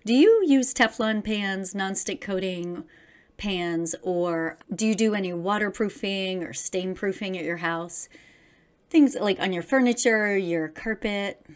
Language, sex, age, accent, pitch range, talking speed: English, female, 30-49, American, 180-245 Hz, 140 wpm